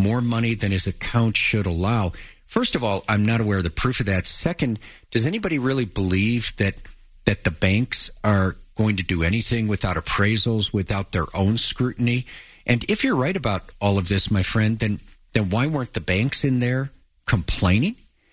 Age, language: 50-69, English